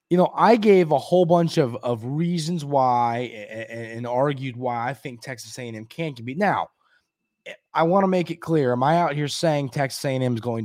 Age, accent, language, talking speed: 20-39, American, English, 230 wpm